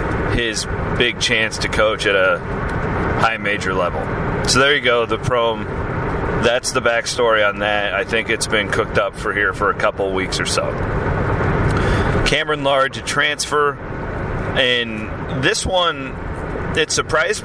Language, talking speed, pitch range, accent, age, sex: English, 150 wpm, 105-135 Hz, American, 30-49, male